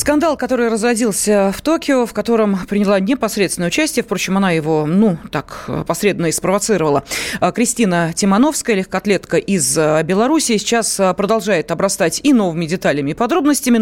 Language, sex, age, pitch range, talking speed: Russian, female, 30-49, 185-255 Hz, 130 wpm